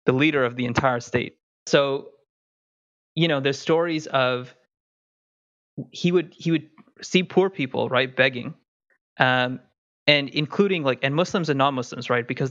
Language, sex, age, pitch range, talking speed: English, male, 20-39, 125-145 Hz, 155 wpm